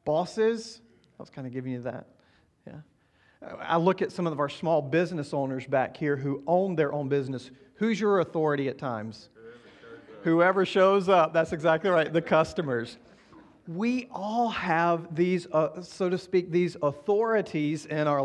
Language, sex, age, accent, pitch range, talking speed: English, male, 40-59, American, 155-200 Hz, 165 wpm